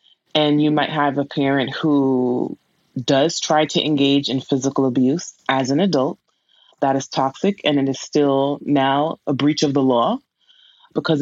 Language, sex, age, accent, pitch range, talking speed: English, female, 20-39, American, 140-170 Hz, 165 wpm